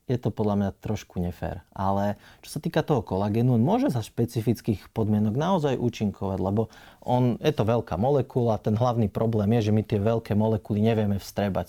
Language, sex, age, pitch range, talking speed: Slovak, male, 30-49, 100-120 Hz, 185 wpm